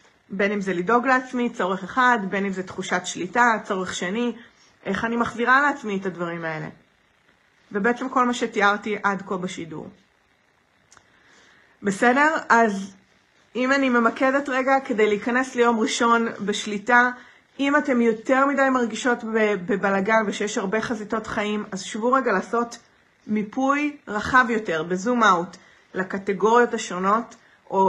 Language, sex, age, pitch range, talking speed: Hebrew, female, 30-49, 195-240 Hz, 130 wpm